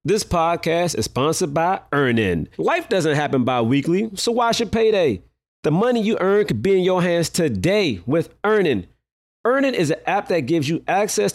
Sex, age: male, 30-49